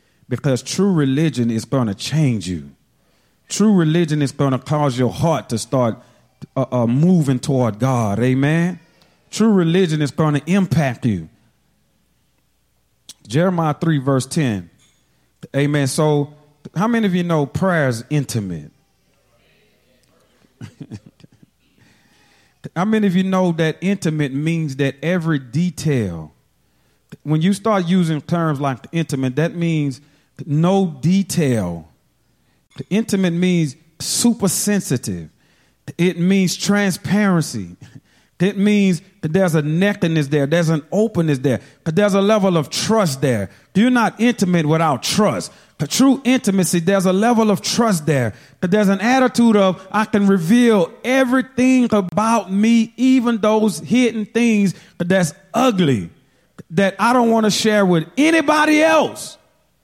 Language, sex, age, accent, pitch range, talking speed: English, male, 40-59, American, 140-200 Hz, 135 wpm